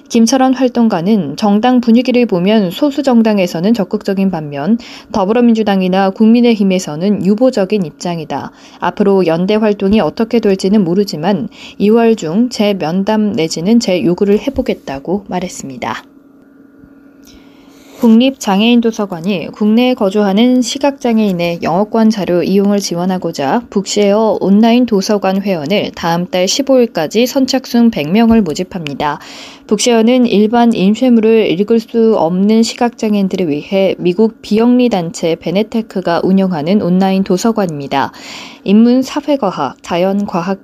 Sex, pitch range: female, 185-235 Hz